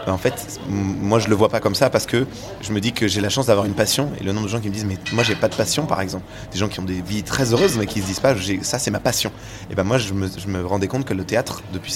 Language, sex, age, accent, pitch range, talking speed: French, male, 20-39, French, 95-115 Hz, 340 wpm